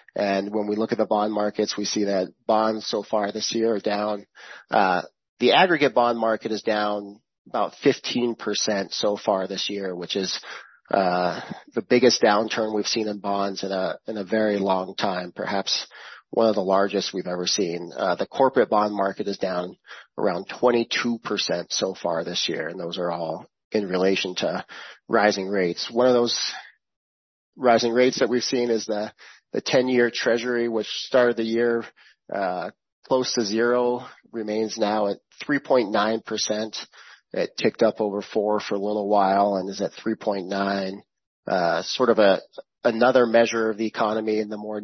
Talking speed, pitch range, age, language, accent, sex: 175 wpm, 100-115 Hz, 40-59, English, American, male